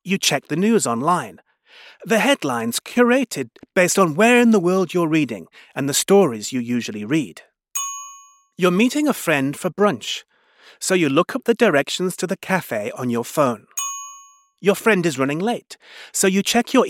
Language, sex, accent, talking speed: English, male, British, 175 wpm